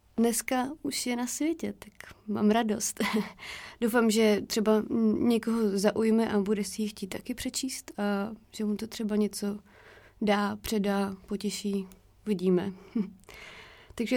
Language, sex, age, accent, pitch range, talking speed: Czech, female, 20-39, native, 200-225 Hz, 130 wpm